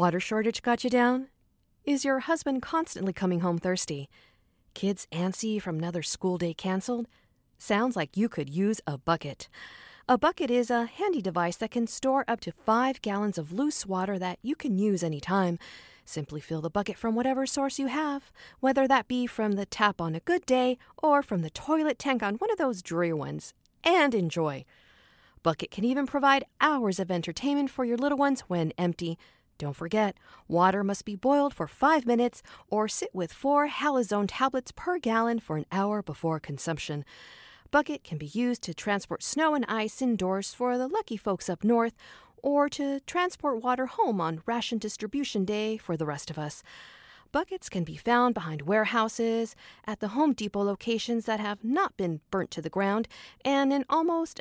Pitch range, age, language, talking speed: 180-265 Hz, 40-59, English, 185 wpm